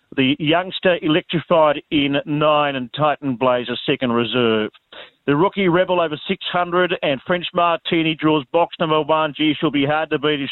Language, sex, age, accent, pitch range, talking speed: English, male, 50-69, Australian, 130-160 Hz, 165 wpm